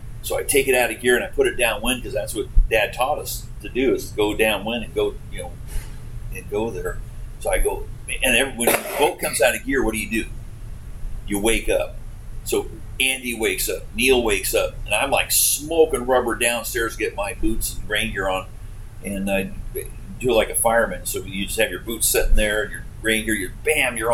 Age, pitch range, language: 40-59, 110-165 Hz, English